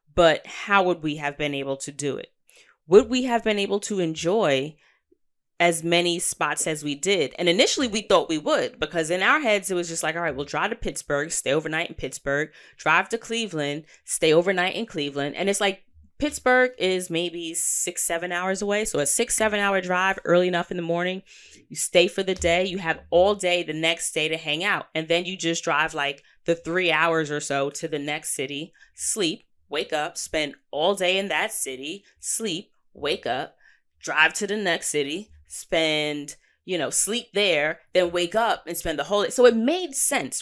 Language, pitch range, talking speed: English, 155-205 Hz, 205 wpm